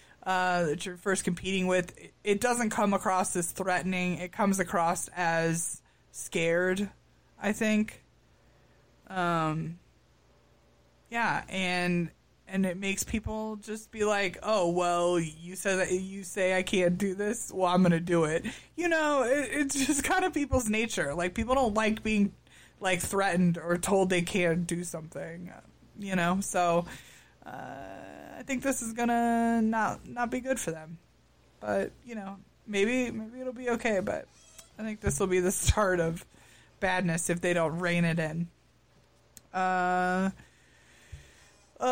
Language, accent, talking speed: English, American, 155 wpm